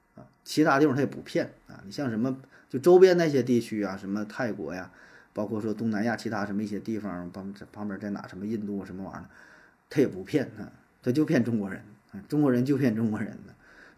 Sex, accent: male, native